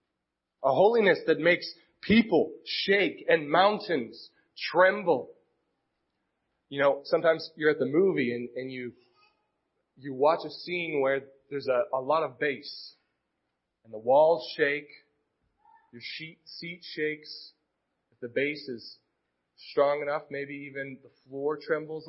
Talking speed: 135 wpm